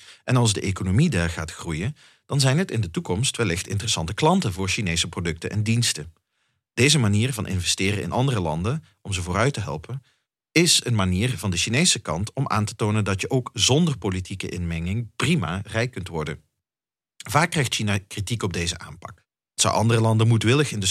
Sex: male